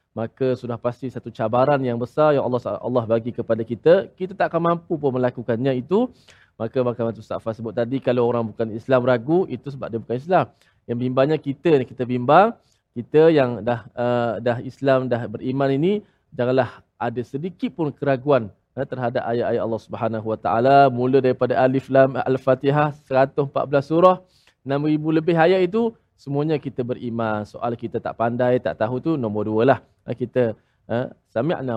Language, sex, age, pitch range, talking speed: Malayalam, male, 20-39, 120-150 Hz, 170 wpm